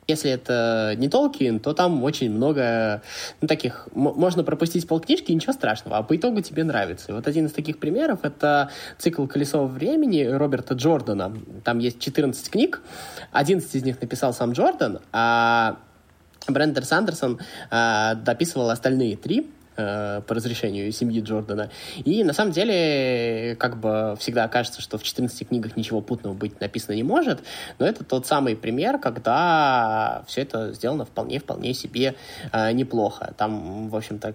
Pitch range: 110-145 Hz